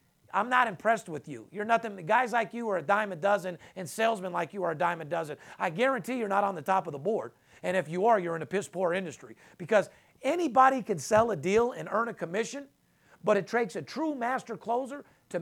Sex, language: male, English